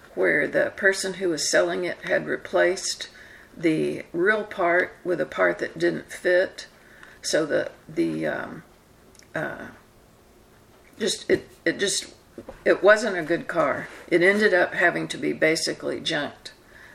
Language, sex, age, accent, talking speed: English, female, 60-79, American, 140 wpm